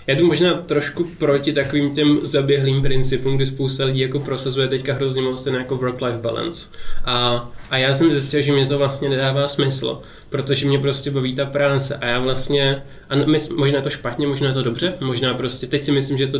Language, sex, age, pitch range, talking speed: Czech, male, 20-39, 130-140 Hz, 210 wpm